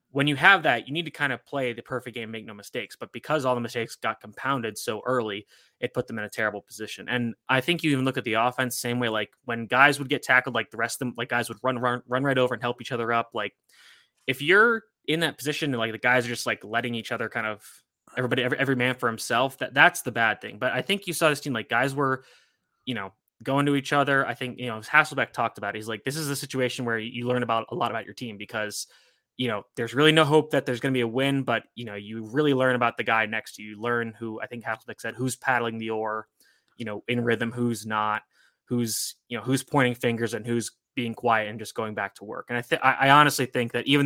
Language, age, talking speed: English, 20-39, 270 wpm